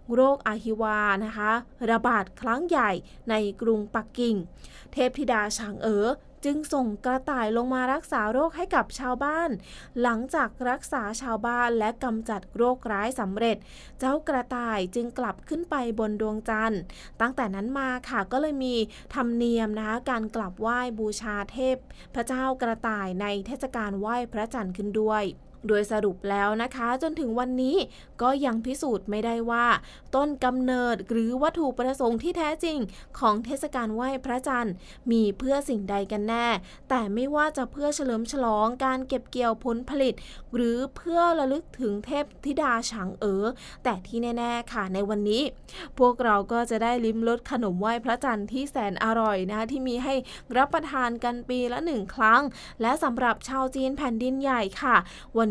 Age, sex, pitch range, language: 20-39, female, 220-260 Hz, English